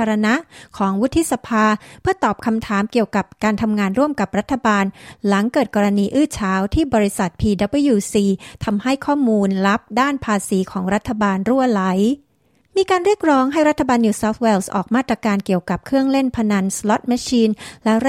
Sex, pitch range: female, 200-245 Hz